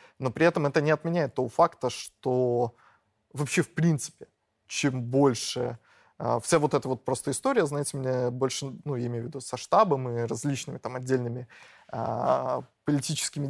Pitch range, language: 130-160 Hz, Russian